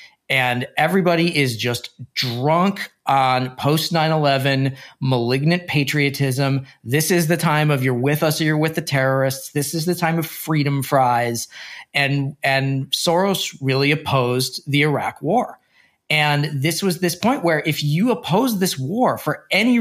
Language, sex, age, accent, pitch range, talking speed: English, male, 40-59, American, 135-175 Hz, 160 wpm